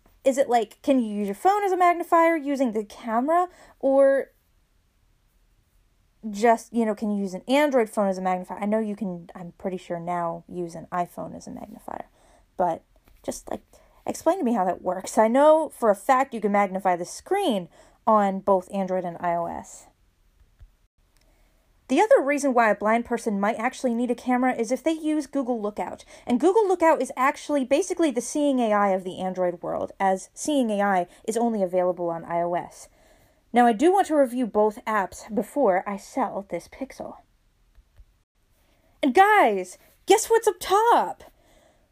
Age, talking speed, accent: 30-49, 175 wpm, American